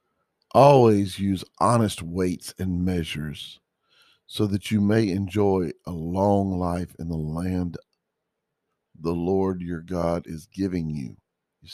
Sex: male